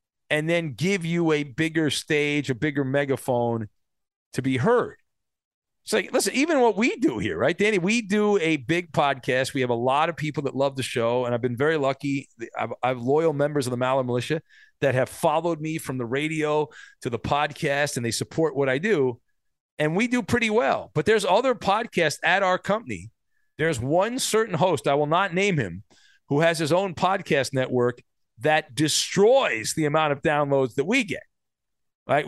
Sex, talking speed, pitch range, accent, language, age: male, 195 wpm, 130-175 Hz, American, English, 40-59